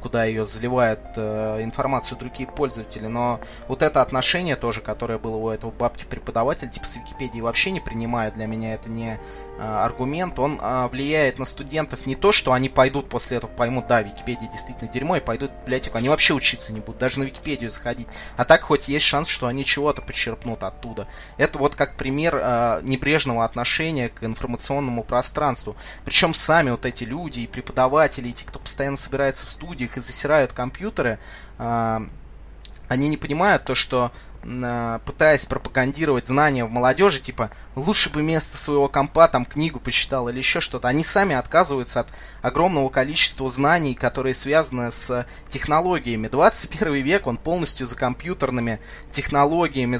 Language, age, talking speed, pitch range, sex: Russian, 20-39, 165 wpm, 115-145 Hz, male